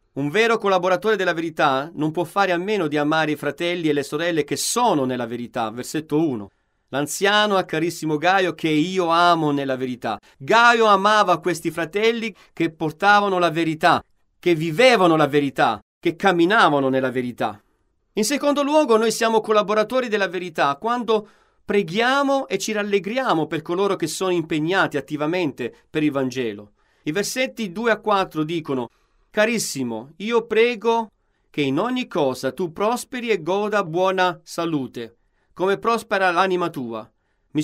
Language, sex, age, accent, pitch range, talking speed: Italian, male, 40-59, native, 150-210 Hz, 150 wpm